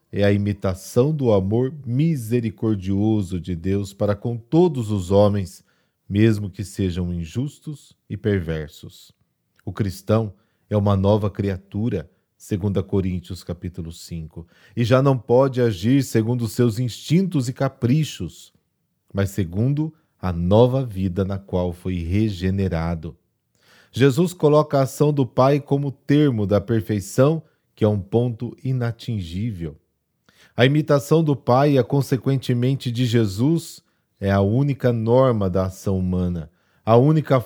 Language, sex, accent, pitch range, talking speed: Portuguese, male, Brazilian, 95-130 Hz, 130 wpm